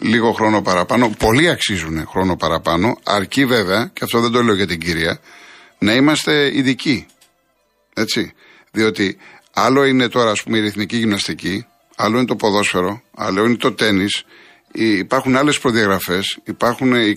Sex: male